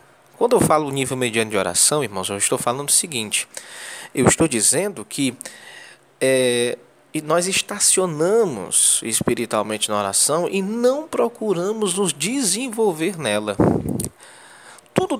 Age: 20-39